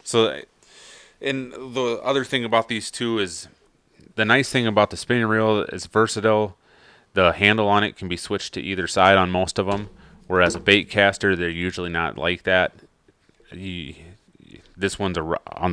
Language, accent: English, American